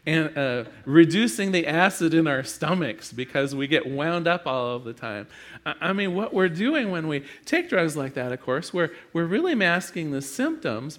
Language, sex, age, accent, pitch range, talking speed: English, male, 40-59, American, 140-180 Hz, 195 wpm